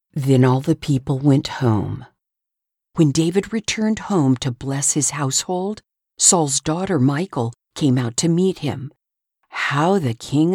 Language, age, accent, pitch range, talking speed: English, 50-69, American, 130-175 Hz, 140 wpm